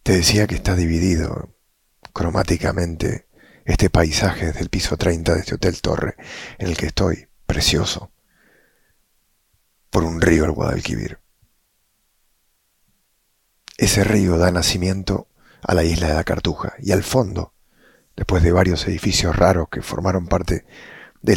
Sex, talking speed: male, 135 wpm